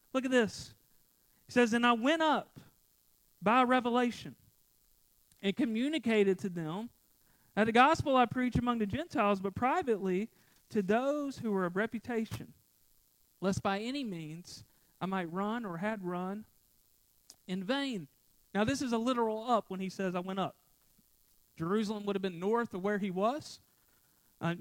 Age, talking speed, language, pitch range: 40-59, 160 wpm, English, 195-250 Hz